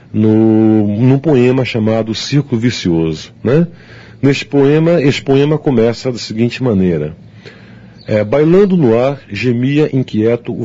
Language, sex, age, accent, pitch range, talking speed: Portuguese, male, 40-59, Brazilian, 110-145 Hz, 115 wpm